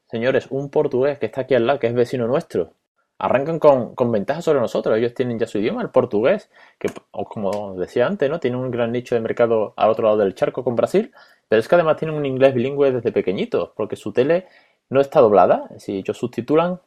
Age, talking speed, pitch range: 20-39, 230 wpm, 110-135 Hz